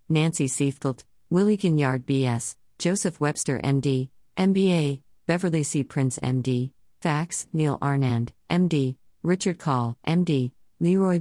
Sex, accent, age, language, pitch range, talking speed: female, American, 50-69, English, 130-165 Hz, 110 wpm